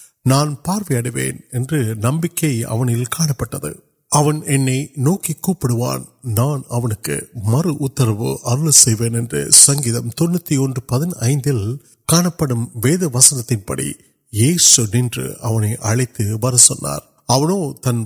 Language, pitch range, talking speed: Urdu, 115-145 Hz, 35 wpm